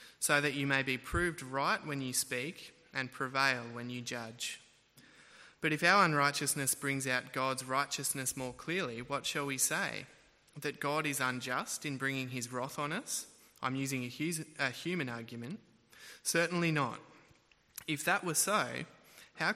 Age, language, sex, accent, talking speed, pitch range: 20-39, English, male, Australian, 155 wpm, 130-160 Hz